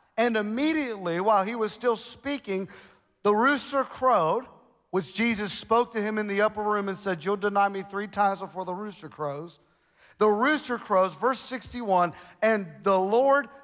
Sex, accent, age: male, American, 40-59